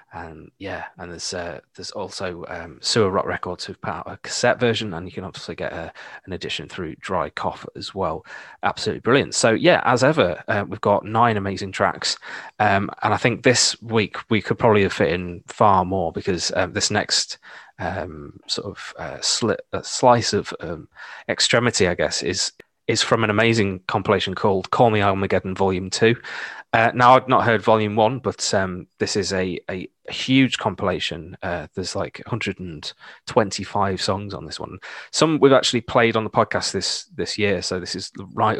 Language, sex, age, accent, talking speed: English, male, 20-39, British, 185 wpm